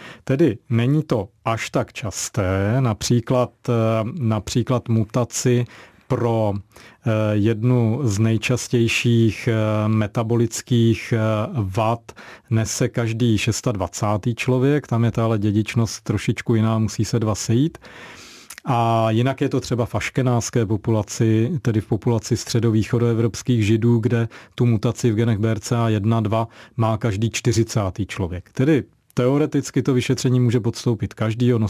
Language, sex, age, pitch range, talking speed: Czech, male, 40-59, 110-125 Hz, 110 wpm